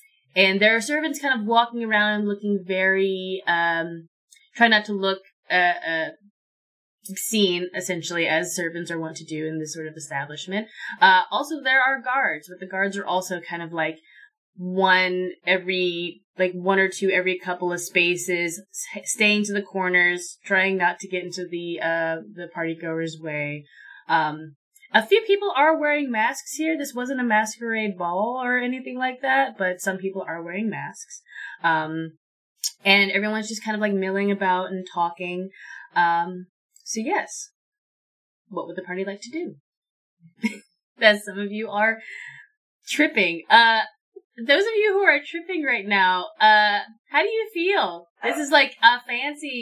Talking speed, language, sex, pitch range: 165 wpm, English, female, 180-250 Hz